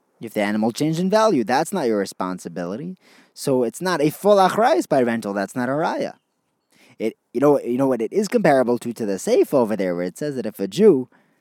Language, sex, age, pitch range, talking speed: English, male, 30-49, 115-175 Hz, 230 wpm